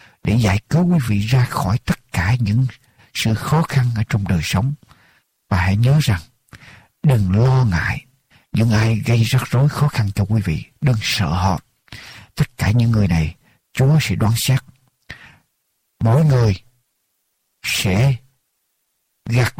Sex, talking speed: male, 155 wpm